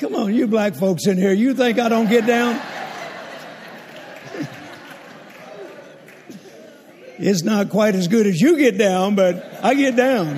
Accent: American